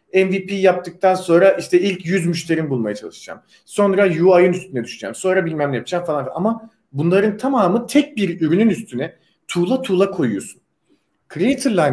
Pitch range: 165-205 Hz